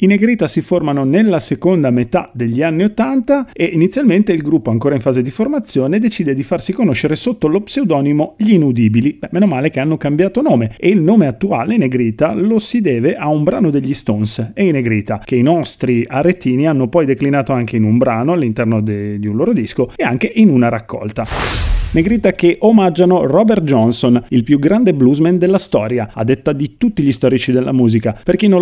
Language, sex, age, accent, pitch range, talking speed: Italian, male, 40-59, native, 120-185 Hz, 200 wpm